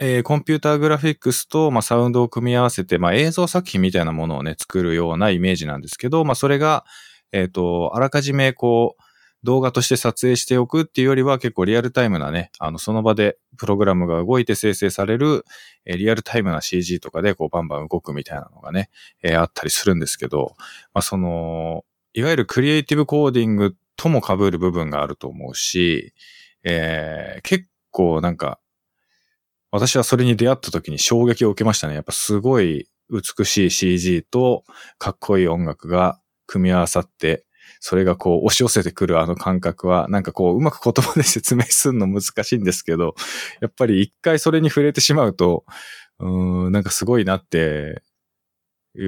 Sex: male